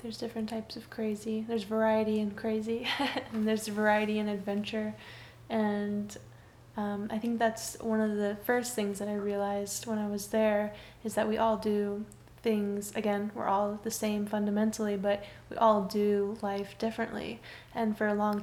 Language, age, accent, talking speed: English, 10-29, American, 175 wpm